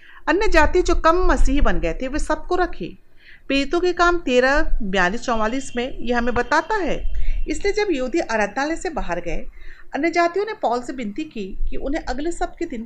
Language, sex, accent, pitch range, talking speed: Hindi, female, native, 260-345 Hz, 195 wpm